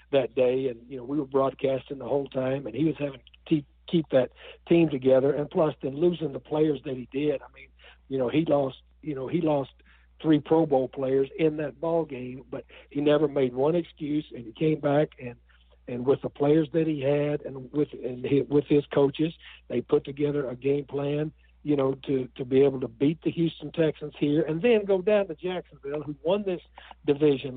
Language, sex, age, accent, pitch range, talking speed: English, male, 60-79, American, 135-160 Hz, 220 wpm